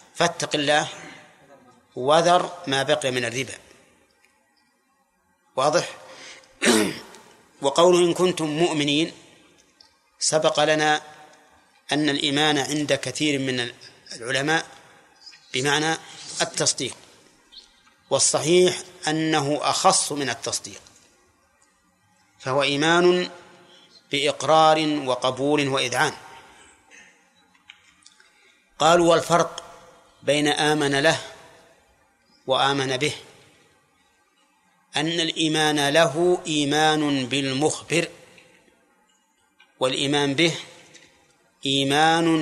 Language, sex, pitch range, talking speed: Arabic, male, 140-170 Hz, 65 wpm